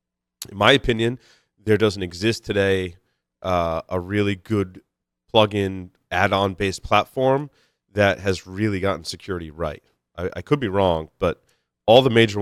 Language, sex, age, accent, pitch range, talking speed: English, male, 30-49, American, 85-105 Hz, 140 wpm